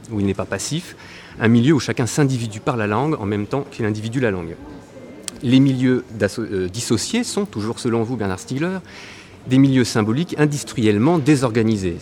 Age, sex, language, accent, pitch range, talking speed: 30-49, male, French, French, 105-135 Hz, 170 wpm